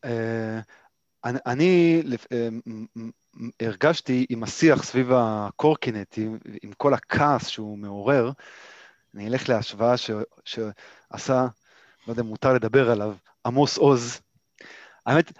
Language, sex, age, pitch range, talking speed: Hebrew, male, 30-49, 120-160 Hz, 115 wpm